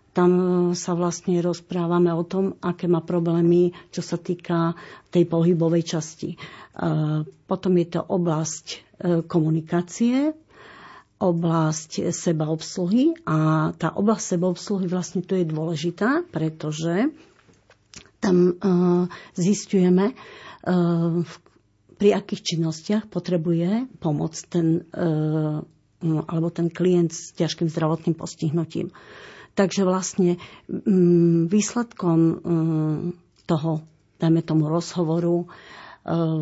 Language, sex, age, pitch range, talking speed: Slovak, female, 50-69, 160-180 Hz, 85 wpm